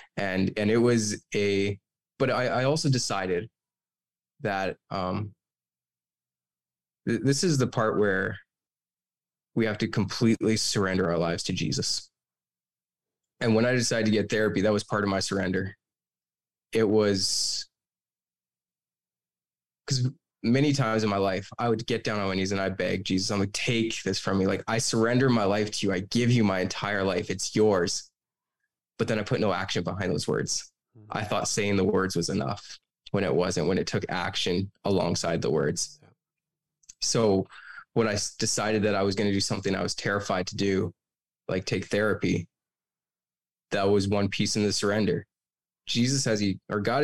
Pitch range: 95-115 Hz